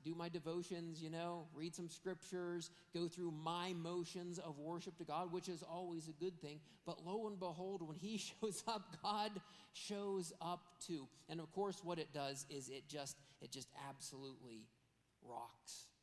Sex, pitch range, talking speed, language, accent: male, 135-170 Hz, 175 wpm, English, American